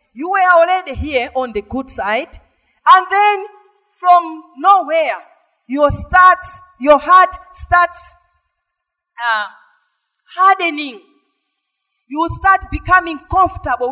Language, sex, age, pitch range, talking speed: English, female, 40-59, 270-375 Hz, 100 wpm